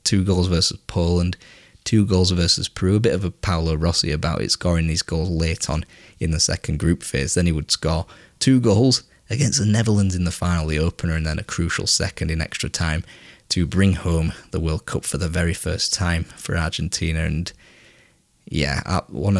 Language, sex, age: English, male, 20-39